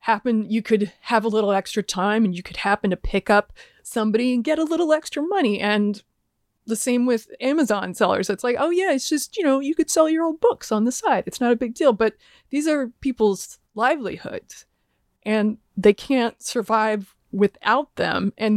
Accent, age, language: American, 30-49, English